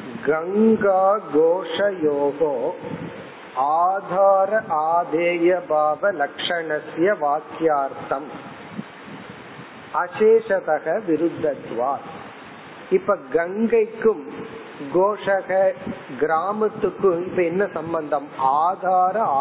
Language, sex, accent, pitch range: Tamil, male, native, 165-210 Hz